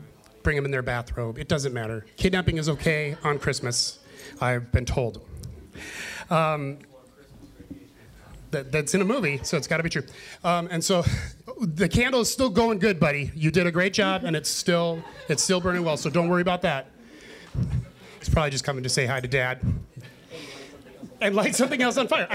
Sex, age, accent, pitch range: male, 30-49, American, 140-195 Hz